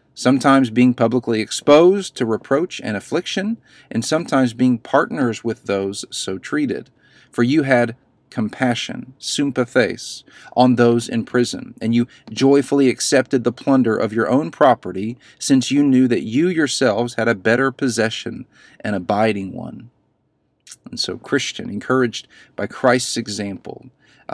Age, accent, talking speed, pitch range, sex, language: 40-59, American, 135 wpm, 115-135 Hz, male, English